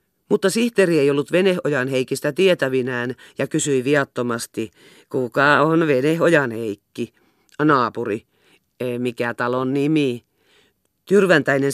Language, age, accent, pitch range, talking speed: Finnish, 40-59, native, 125-150 Hz, 100 wpm